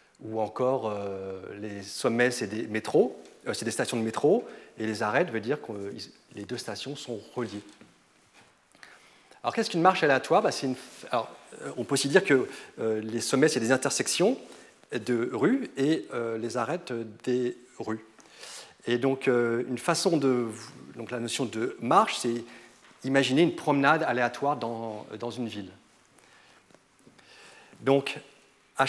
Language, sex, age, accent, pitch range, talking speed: French, male, 40-59, French, 110-140 Hz, 160 wpm